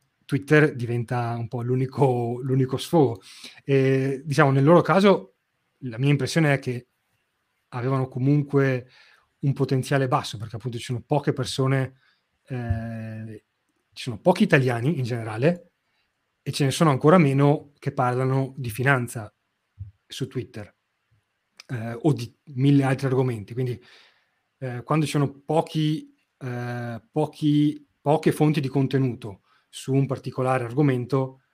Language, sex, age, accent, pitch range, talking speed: Italian, male, 30-49, native, 125-145 Hz, 130 wpm